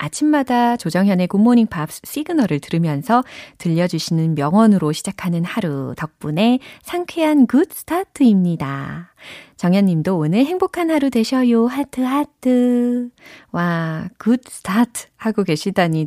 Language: Korean